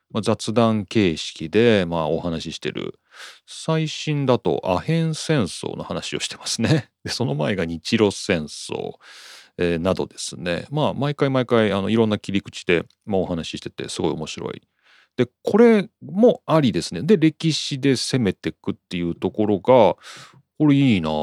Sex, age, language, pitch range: male, 40-59, Japanese, 85-135 Hz